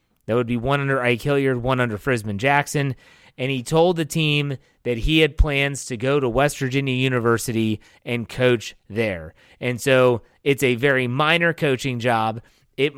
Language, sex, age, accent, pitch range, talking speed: English, male, 30-49, American, 120-150 Hz, 175 wpm